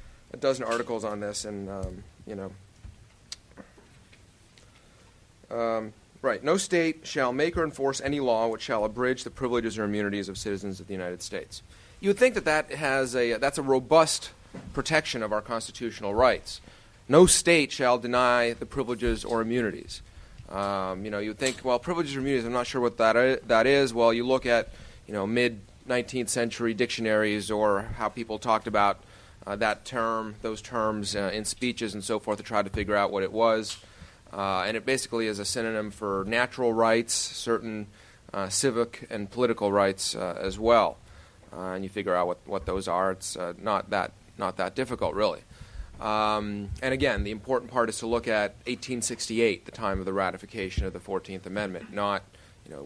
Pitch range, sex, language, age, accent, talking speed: 100-120 Hz, male, English, 30-49, American, 185 wpm